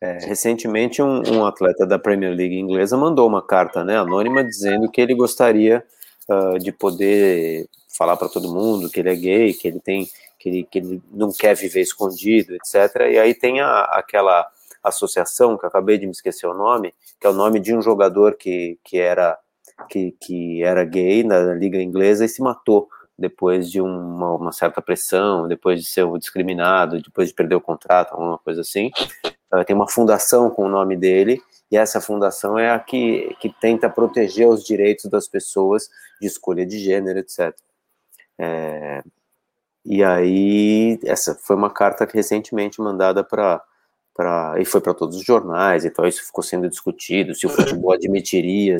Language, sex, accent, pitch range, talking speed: Portuguese, male, Brazilian, 90-105 Hz, 180 wpm